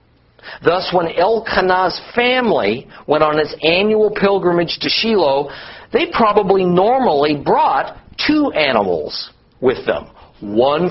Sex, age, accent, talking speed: male, 50-69, American, 110 wpm